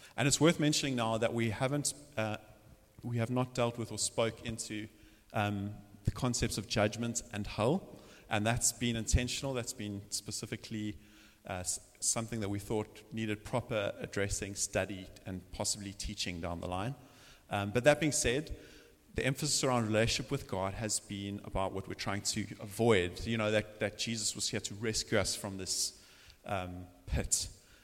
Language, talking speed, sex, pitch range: English, 170 wpm, male, 100-115 Hz